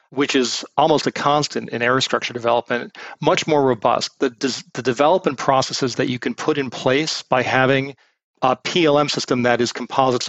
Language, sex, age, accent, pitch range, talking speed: English, male, 40-59, American, 125-145 Hz, 175 wpm